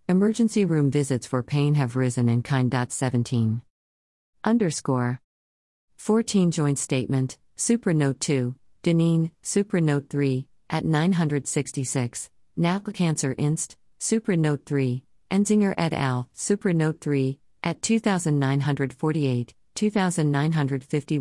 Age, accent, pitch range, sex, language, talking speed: 50-69, American, 130-160 Hz, female, English, 110 wpm